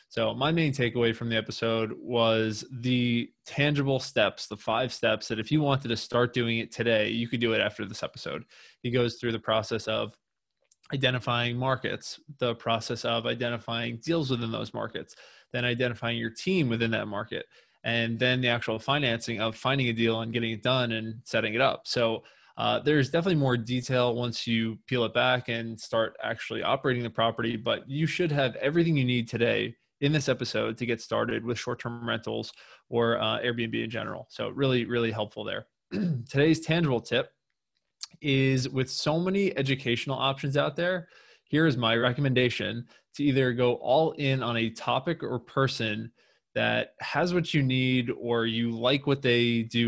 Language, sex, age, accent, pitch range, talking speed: English, male, 20-39, American, 115-135 Hz, 180 wpm